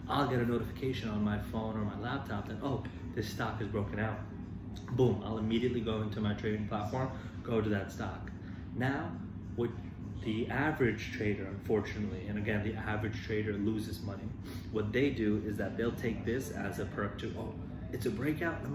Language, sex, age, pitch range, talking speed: English, male, 30-49, 100-115 Hz, 190 wpm